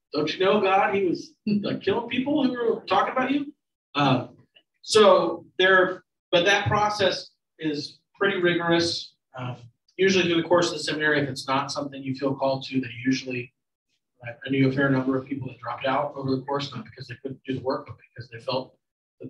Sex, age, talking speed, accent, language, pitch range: male, 40-59, 205 wpm, American, English, 130-170 Hz